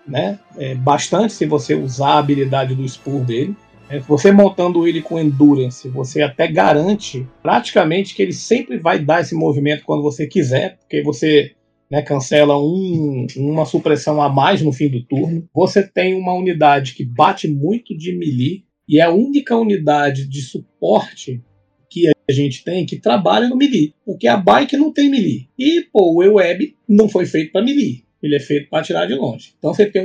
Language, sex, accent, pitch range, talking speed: Portuguese, male, Brazilian, 145-195 Hz, 185 wpm